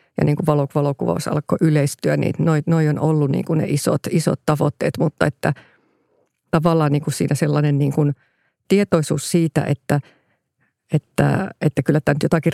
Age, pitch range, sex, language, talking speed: 50-69, 145-170 Hz, female, Finnish, 160 wpm